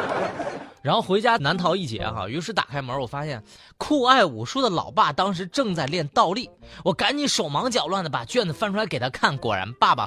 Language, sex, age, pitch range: Chinese, male, 20-39, 125-210 Hz